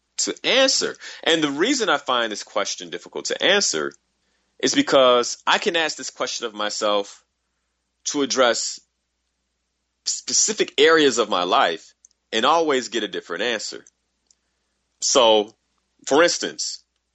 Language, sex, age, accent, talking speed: English, male, 30-49, American, 130 wpm